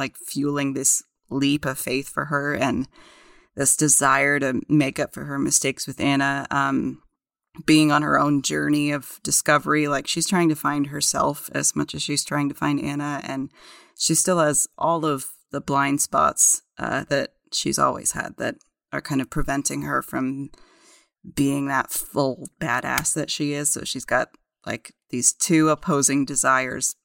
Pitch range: 135-150 Hz